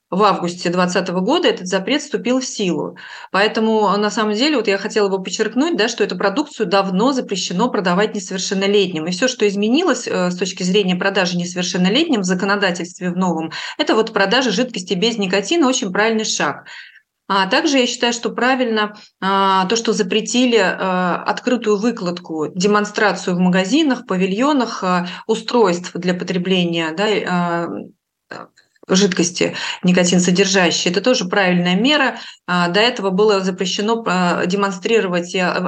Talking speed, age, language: 135 wpm, 30-49, Russian